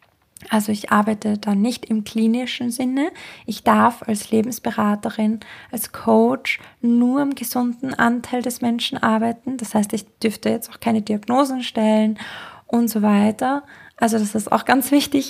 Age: 20-39